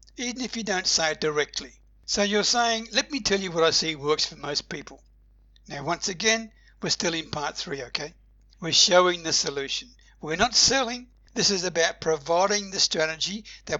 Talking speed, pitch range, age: 190 wpm, 155-205 Hz, 60-79